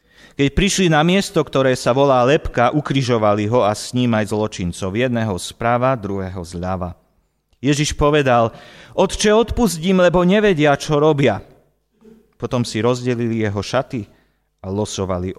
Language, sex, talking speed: Slovak, male, 125 wpm